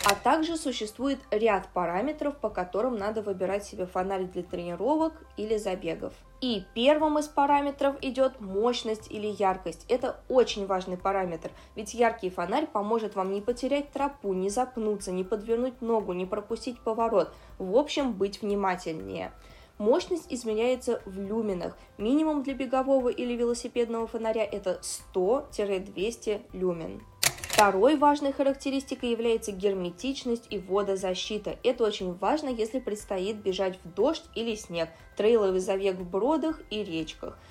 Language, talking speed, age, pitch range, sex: Russian, 135 wpm, 20-39, 195-255 Hz, female